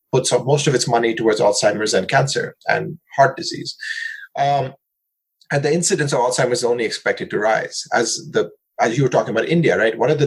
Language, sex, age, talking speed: English, male, 30-49, 200 wpm